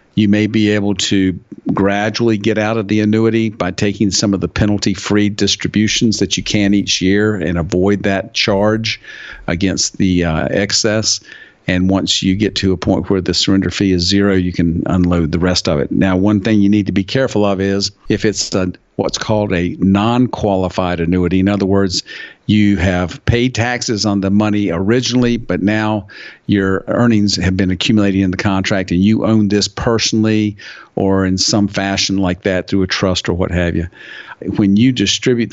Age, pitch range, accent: 50-69, 95-110 Hz, American